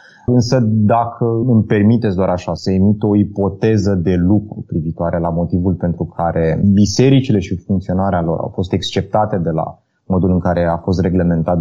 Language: Romanian